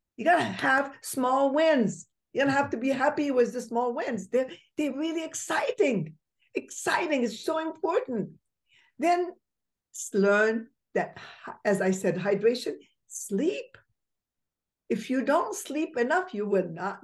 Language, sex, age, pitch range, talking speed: English, female, 50-69, 185-280 Hz, 140 wpm